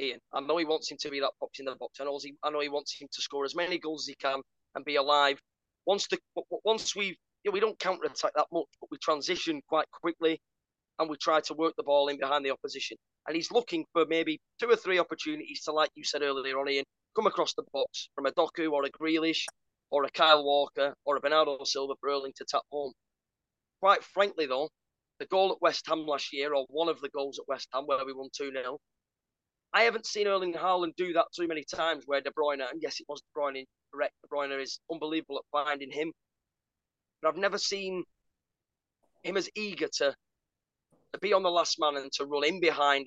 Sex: male